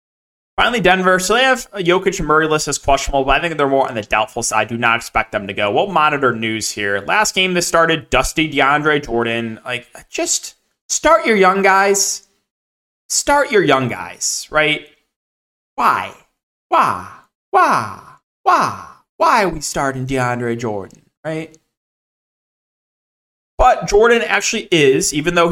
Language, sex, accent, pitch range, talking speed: English, male, American, 130-185 Hz, 155 wpm